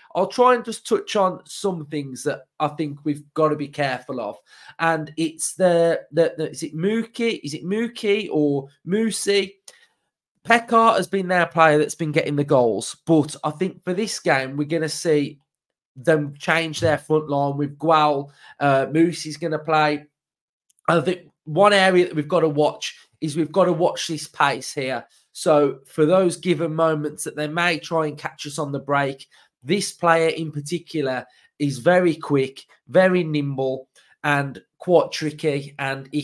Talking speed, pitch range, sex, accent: 175 wpm, 150-180 Hz, male, British